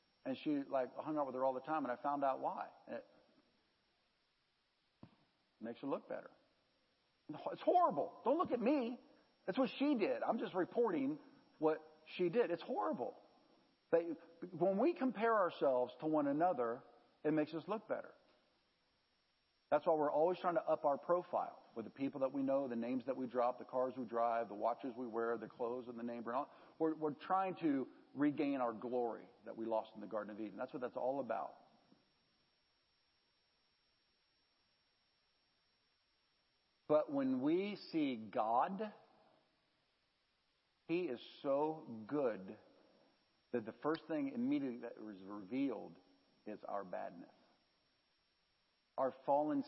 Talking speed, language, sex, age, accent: 155 wpm, English, male, 50-69, American